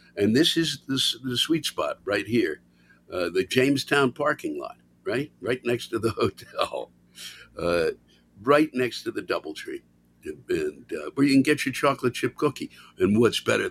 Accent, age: American, 60-79